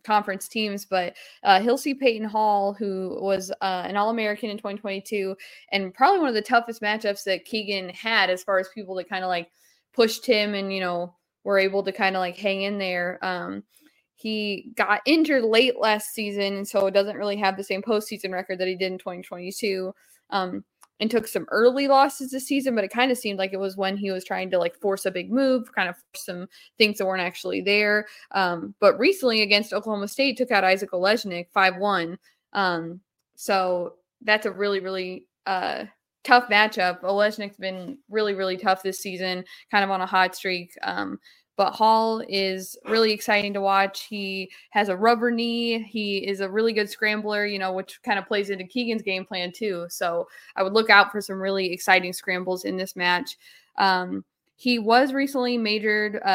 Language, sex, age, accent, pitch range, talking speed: English, female, 20-39, American, 190-220 Hz, 195 wpm